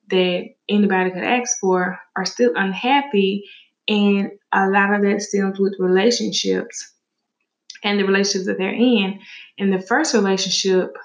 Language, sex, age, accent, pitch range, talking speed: English, female, 20-39, American, 185-220 Hz, 140 wpm